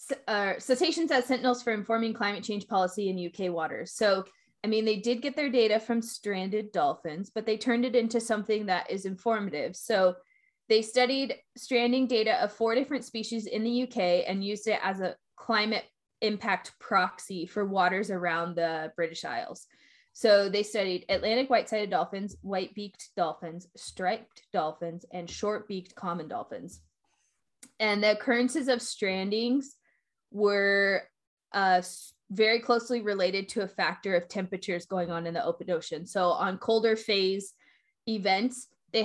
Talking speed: 150 wpm